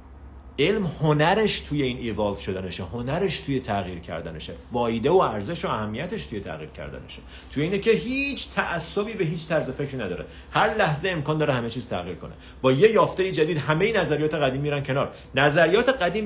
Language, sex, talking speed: Persian, male, 175 wpm